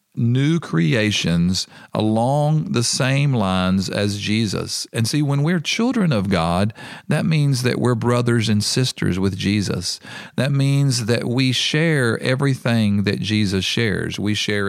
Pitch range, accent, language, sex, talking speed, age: 100-135 Hz, American, English, male, 145 wpm, 50-69